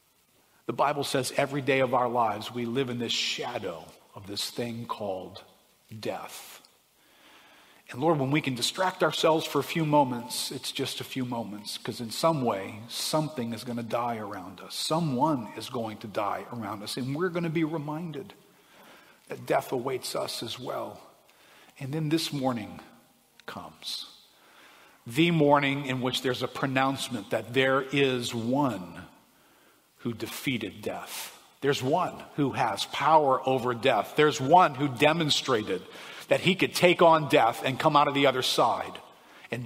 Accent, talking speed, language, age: American, 165 wpm, English, 50-69